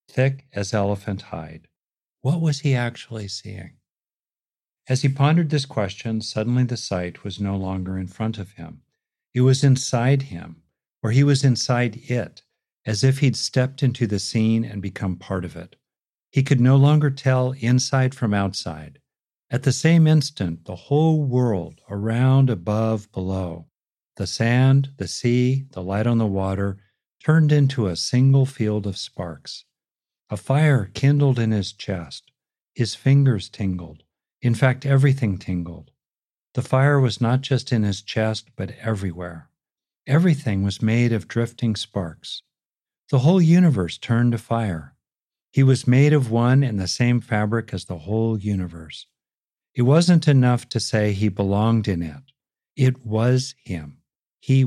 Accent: American